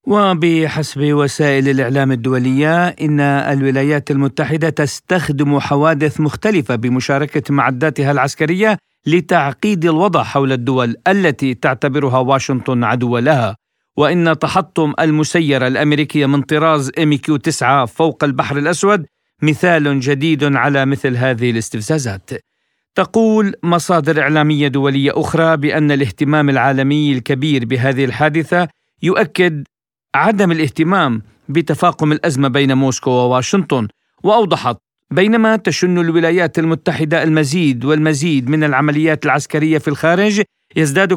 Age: 50-69